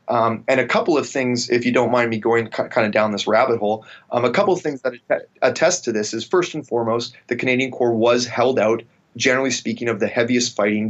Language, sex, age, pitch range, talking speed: English, male, 30-49, 110-130 Hz, 235 wpm